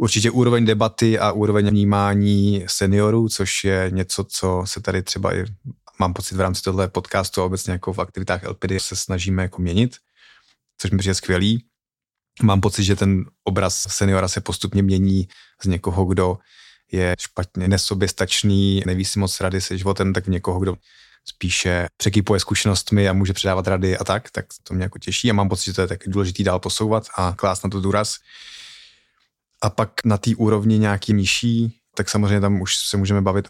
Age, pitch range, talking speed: 20-39, 95-105 Hz, 185 wpm